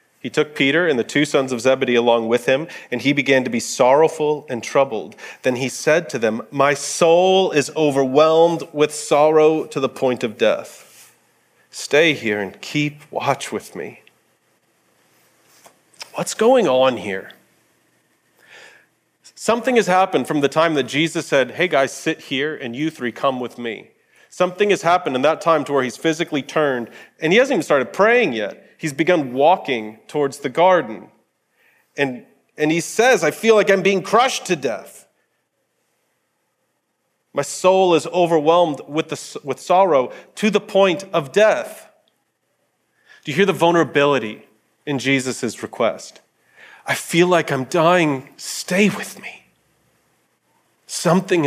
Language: English